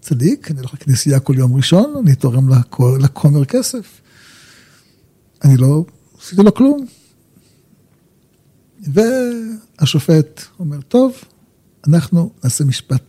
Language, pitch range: Hebrew, 130-195 Hz